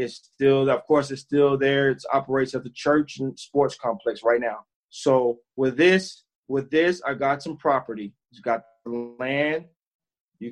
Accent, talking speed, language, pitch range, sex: American, 175 wpm, English, 135-165 Hz, male